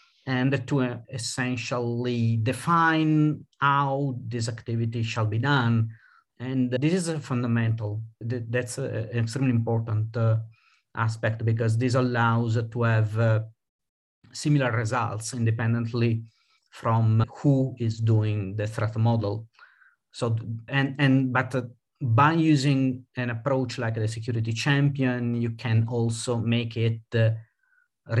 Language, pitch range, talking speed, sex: English, 115-130 Hz, 120 wpm, male